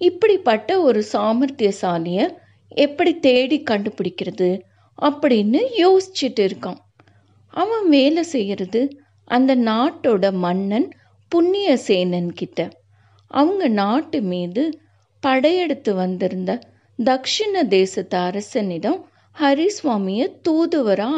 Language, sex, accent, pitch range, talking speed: Tamil, female, native, 185-300 Hz, 75 wpm